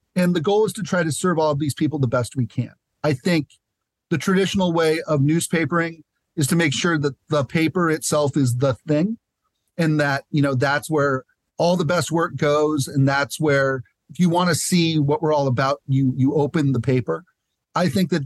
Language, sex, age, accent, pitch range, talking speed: English, male, 40-59, American, 135-165 Hz, 215 wpm